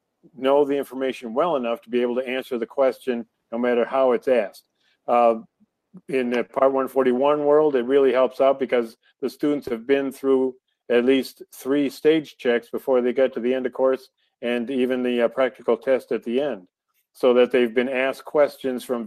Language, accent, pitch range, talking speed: English, American, 120-135 Hz, 195 wpm